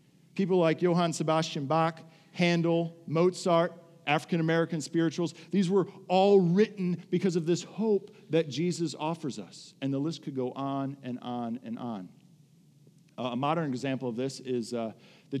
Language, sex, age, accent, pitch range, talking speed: English, male, 40-59, American, 130-165 Hz, 160 wpm